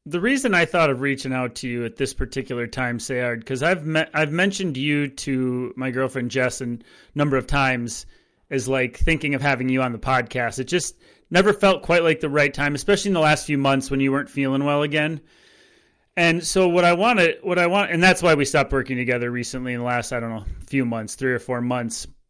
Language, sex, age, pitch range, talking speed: English, male, 30-49, 130-170 Hz, 235 wpm